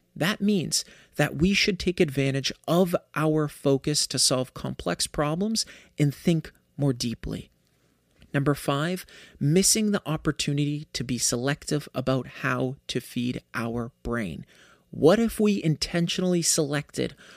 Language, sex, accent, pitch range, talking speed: English, male, American, 135-175 Hz, 130 wpm